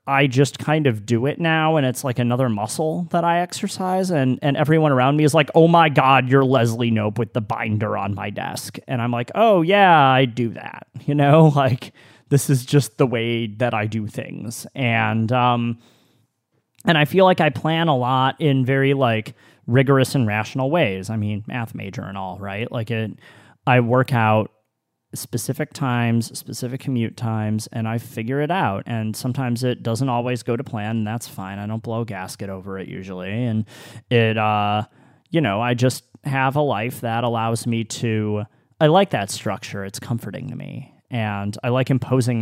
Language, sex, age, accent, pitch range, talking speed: English, male, 30-49, American, 110-135 Hz, 195 wpm